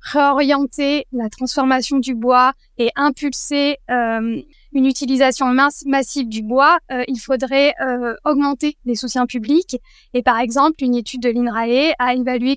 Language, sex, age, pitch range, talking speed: French, female, 10-29, 245-280 Hz, 150 wpm